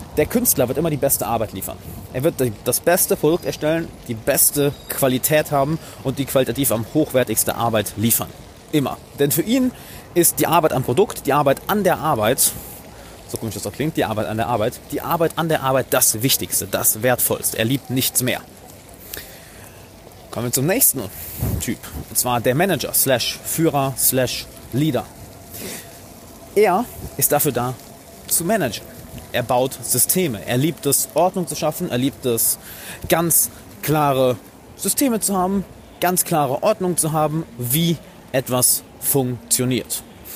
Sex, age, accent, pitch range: male, 30-49, German, 115-160 Hz